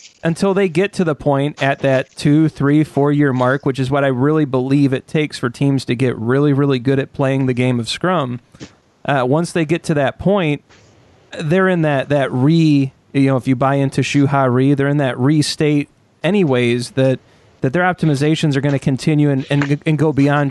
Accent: American